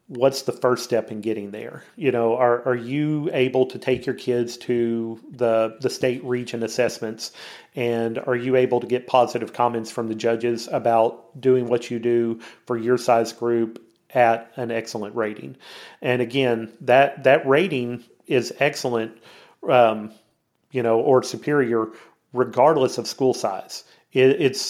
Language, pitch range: English, 115-130 Hz